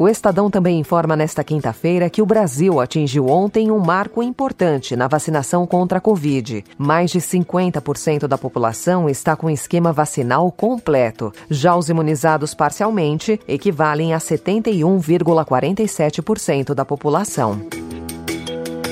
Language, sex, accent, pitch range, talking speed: Portuguese, female, Brazilian, 145-205 Hz, 120 wpm